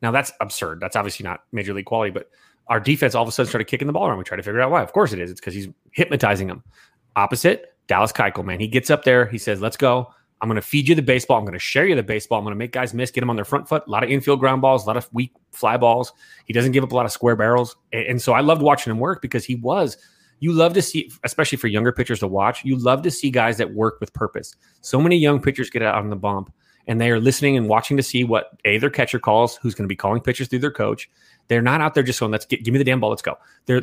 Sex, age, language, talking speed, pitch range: male, 30-49, English, 305 wpm, 110-135 Hz